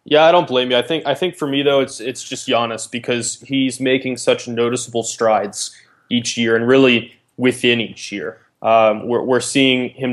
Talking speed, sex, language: 200 wpm, male, English